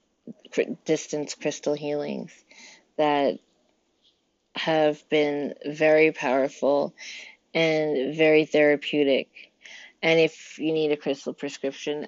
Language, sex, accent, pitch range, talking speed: English, female, American, 140-155 Hz, 90 wpm